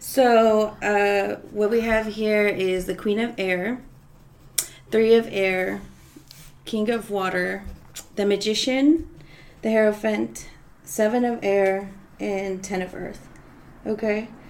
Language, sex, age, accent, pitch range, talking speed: English, female, 20-39, American, 190-220 Hz, 120 wpm